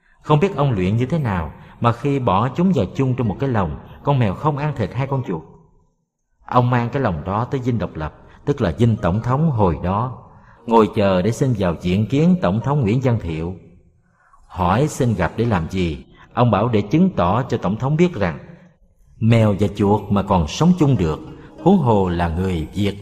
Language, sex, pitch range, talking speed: Vietnamese, male, 95-130 Hz, 215 wpm